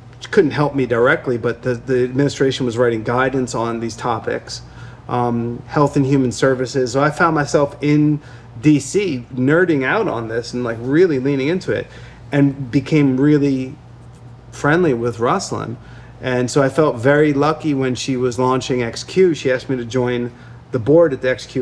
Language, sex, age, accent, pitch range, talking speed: English, male, 30-49, American, 120-145 Hz, 170 wpm